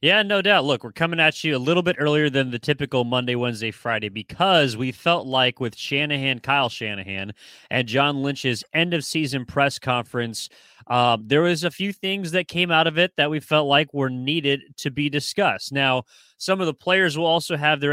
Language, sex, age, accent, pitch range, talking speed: English, male, 30-49, American, 120-150 Hz, 210 wpm